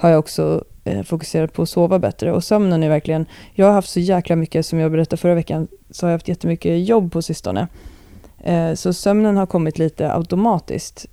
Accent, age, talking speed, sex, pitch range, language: native, 30-49, 200 wpm, female, 155-180 Hz, Swedish